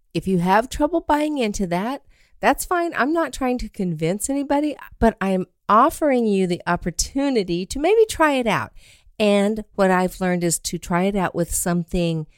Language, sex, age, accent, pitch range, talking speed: English, female, 50-69, American, 170-235 Hz, 180 wpm